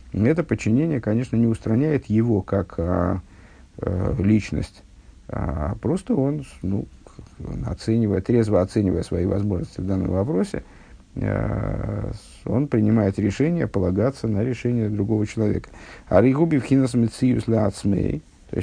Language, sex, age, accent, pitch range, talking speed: Russian, male, 50-69, native, 95-120 Hz, 115 wpm